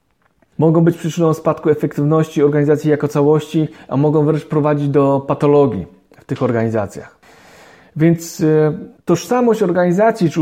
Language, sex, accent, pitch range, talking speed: Polish, male, native, 145-170 Hz, 120 wpm